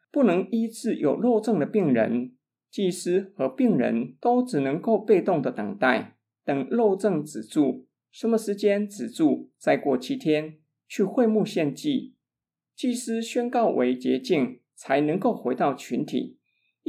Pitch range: 150-255 Hz